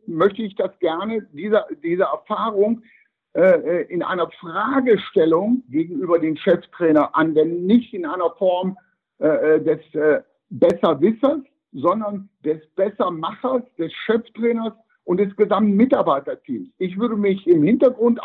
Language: German